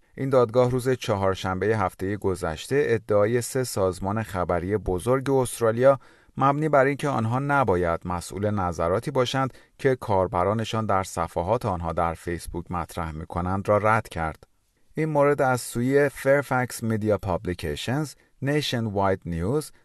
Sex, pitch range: male, 85-125 Hz